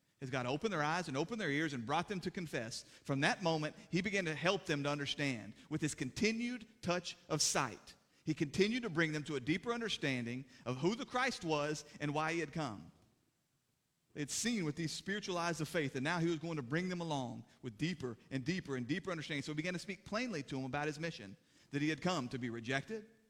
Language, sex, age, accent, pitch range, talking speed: English, male, 40-59, American, 135-180 Hz, 230 wpm